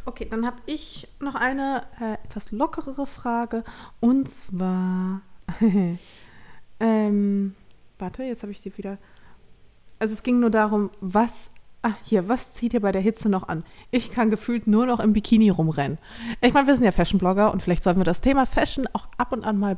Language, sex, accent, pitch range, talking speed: German, female, German, 185-235 Hz, 185 wpm